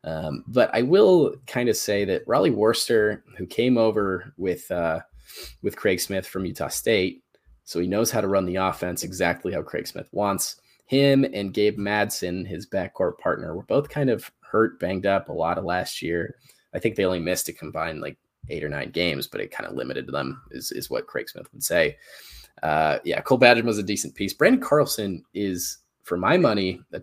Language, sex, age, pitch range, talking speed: English, male, 20-39, 90-115 Hz, 205 wpm